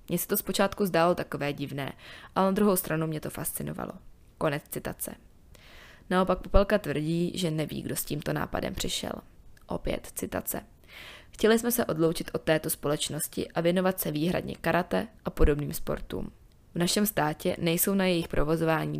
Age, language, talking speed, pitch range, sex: 20-39, Czech, 160 wpm, 155-190 Hz, female